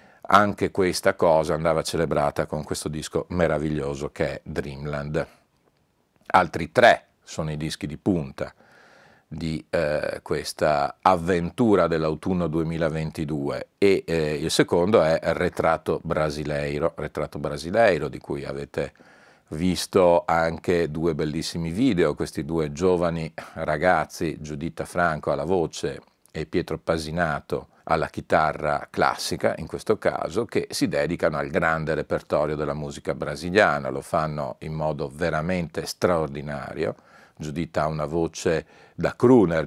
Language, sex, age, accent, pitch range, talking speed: Italian, male, 40-59, native, 75-85 Hz, 120 wpm